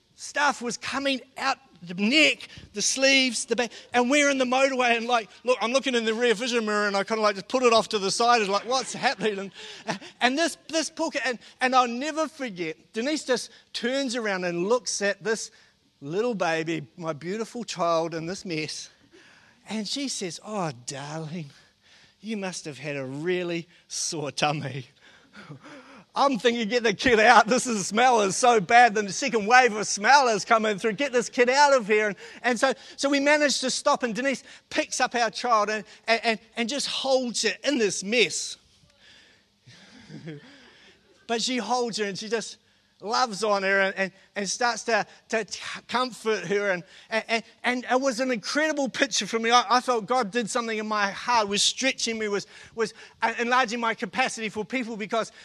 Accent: Australian